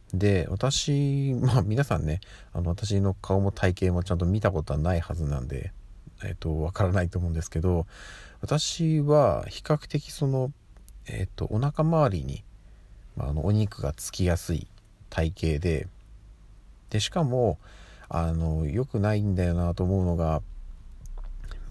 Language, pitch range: Japanese, 80-105 Hz